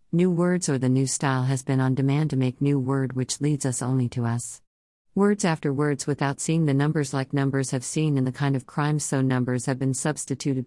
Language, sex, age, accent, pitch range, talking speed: English, female, 50-69, American, 125-145 Hz, 230 wpm